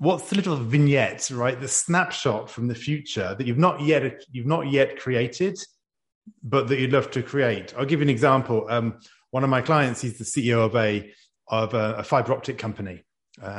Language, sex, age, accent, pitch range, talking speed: English, male, 30-49, British, 110-135 Hz, 205 wpm